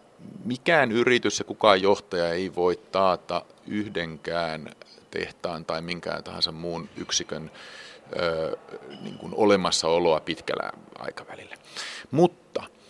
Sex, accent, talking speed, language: male, native, 100 wpm, Finnish